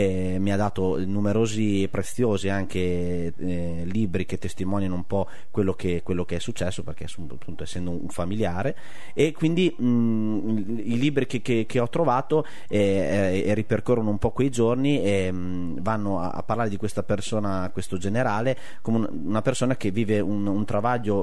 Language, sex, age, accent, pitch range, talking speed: Italian, male, 30-49, native, 95-120 Hz, 170 wpm